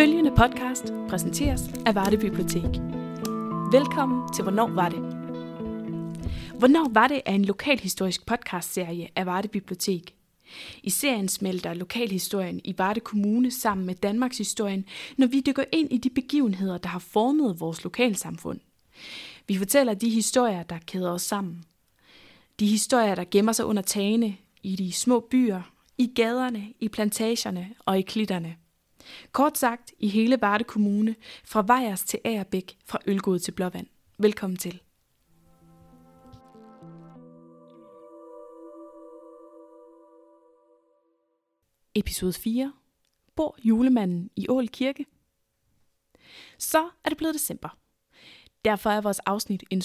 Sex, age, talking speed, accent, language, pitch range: female, 20-39, 125 wpm, native, Danish, 175-240 Hz